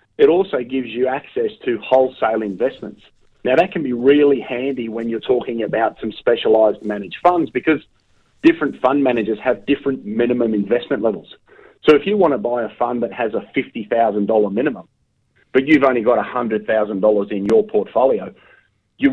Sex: male